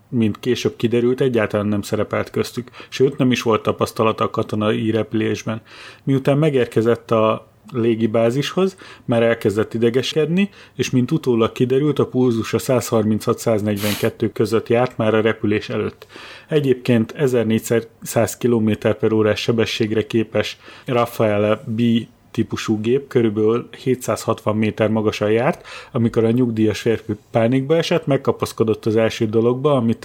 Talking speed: 120 wpm